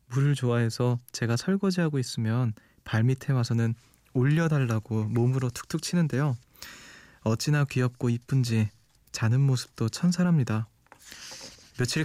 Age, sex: 20-39, male